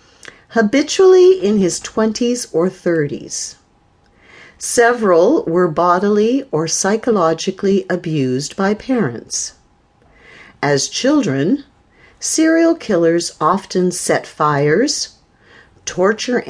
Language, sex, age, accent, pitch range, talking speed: English, female, 50-69, American, 155-225 Hz, 80 wpm